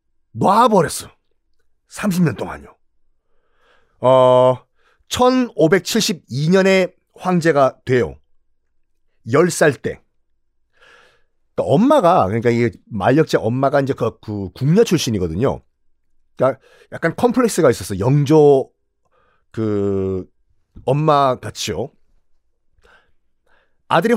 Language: Korean